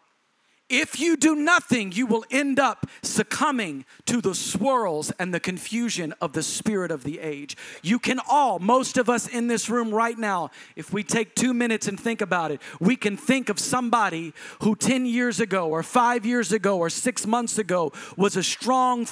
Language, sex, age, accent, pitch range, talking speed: English, male, 40-59, American, 180-245 Hz, 190 wpm